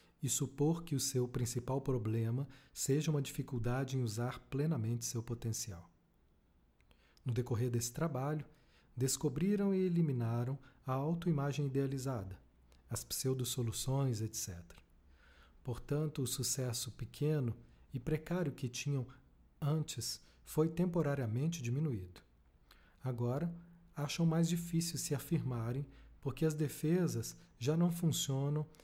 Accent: Brazilian